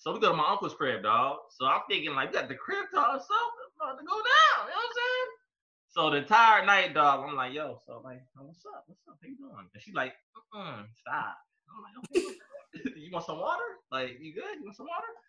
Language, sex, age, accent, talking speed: English, male, 20-39, American, 255 wpm